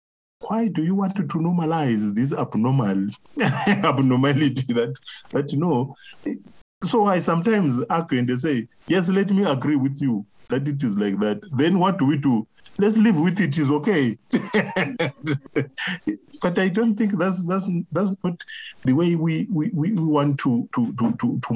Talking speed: 165 wpm